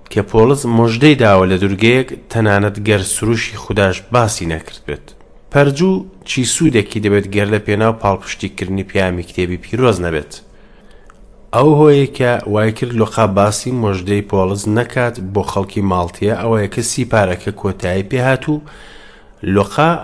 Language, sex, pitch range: English, male, 95-115 Hz